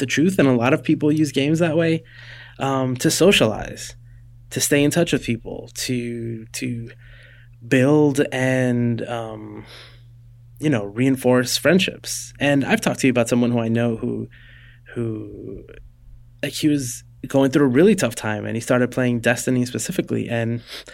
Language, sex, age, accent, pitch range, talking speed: English, male, 20-39, American, 115-135 Hz, 165 wpm